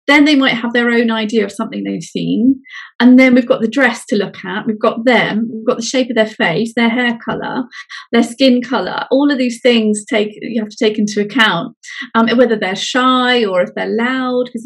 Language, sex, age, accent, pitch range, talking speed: English, female, 30-49, British, 215-255 Hz, 230 wpm